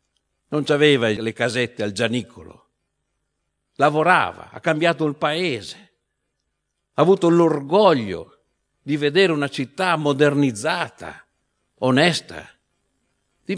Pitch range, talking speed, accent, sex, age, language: 110-155 Hz, 95 wpm, native, male, 60-79, Italian